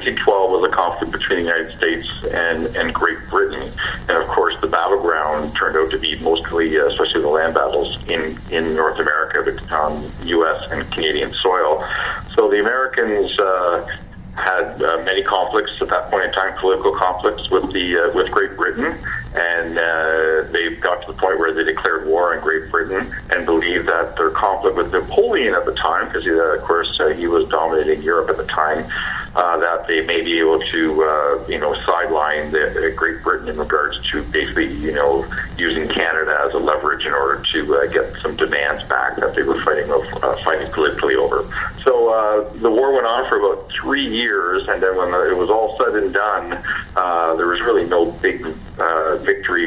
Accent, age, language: American, 50-69, English